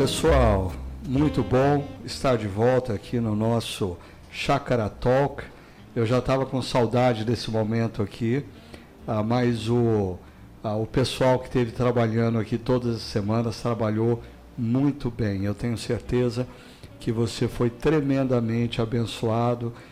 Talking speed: 120 wpm